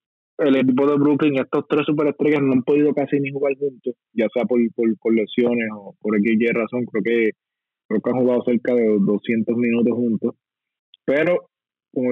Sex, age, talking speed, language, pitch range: male, 20-39, 185 wpm, Spanish, 110-130 Hz